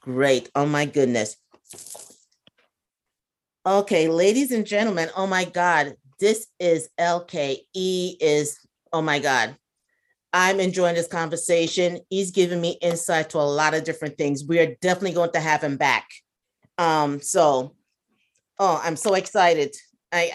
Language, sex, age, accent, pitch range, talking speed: English, female, 40-59, American, 160-195 Hz, 140 wpm